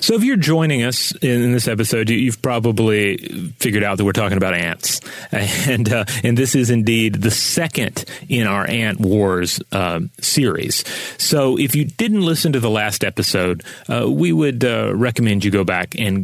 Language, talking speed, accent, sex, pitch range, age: English, 180 wpm, American, male, 95-120 Hz, 30-49